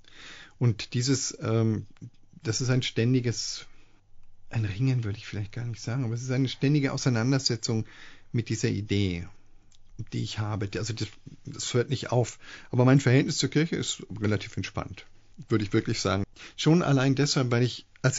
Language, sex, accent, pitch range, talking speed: German, male, German, 105-130 Hz, 170 wpm